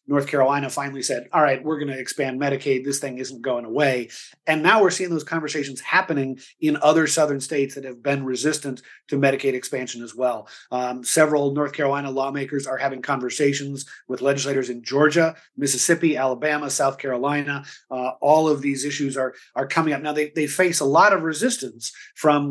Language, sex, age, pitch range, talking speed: English, male, 30-49, 130-150 Hz, 185 wpm